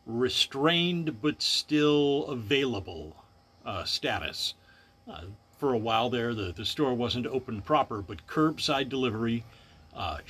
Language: English